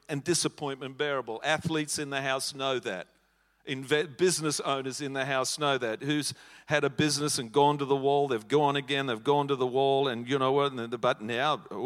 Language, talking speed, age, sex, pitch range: English, 195 wpm, 50-69, male, 130-160 Hz